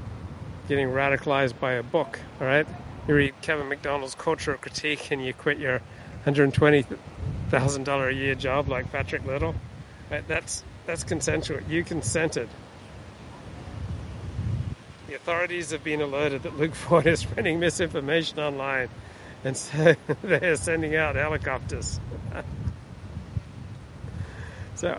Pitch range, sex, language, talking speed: 125-155 Hz, male, English, 125 wpm